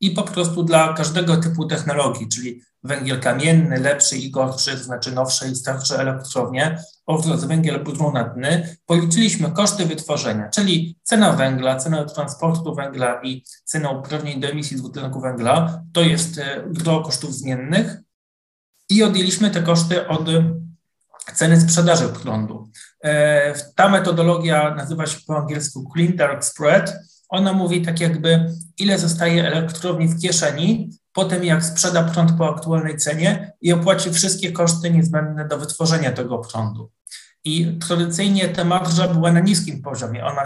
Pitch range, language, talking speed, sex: 145-170 Hz, Polish, 140 wpm, male